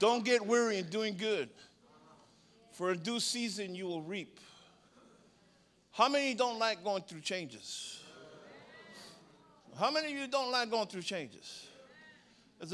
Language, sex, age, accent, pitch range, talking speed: English, male, 50-69, American, 225-285 Hz, 140 wpm